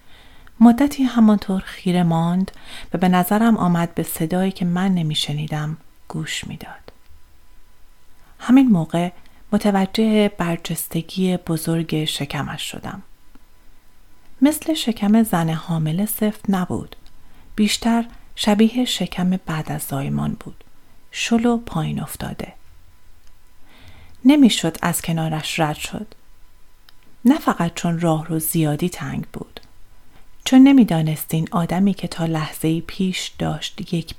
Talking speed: 105 wpm